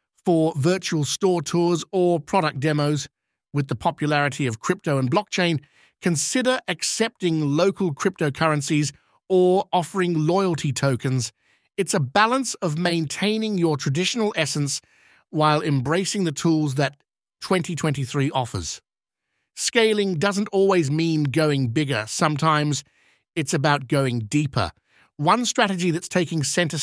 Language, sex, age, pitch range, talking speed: English, male, 50-69, 145-190 Hz, 120 wpm